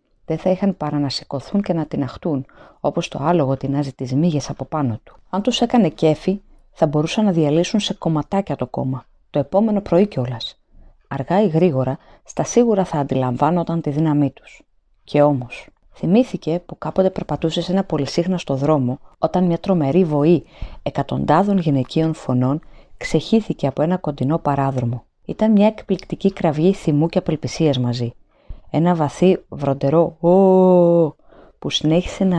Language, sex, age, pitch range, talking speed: Greek, female, 30-49, 140-185 Hz, 150 wpm